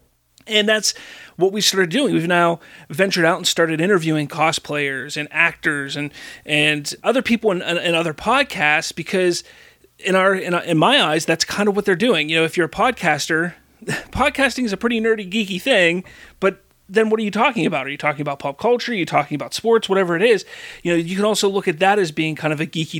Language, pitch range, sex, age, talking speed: English, 160-205 Hz, male, 30-49, 225 wpm